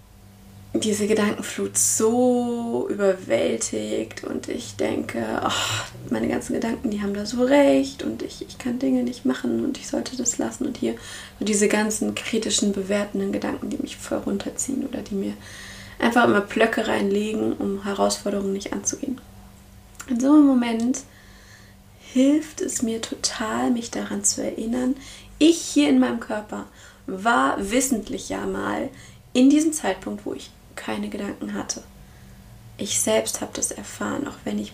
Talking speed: 150 wpm